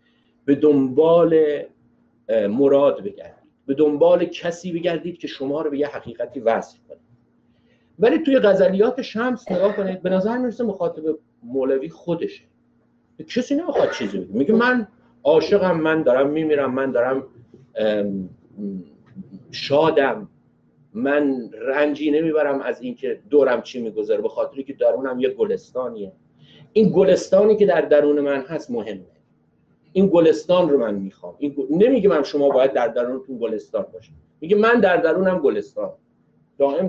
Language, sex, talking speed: Persian, male, 135 wpm